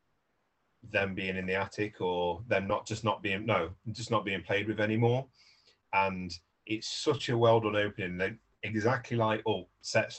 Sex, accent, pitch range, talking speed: male, British, 90-115 Hz, 175 wpm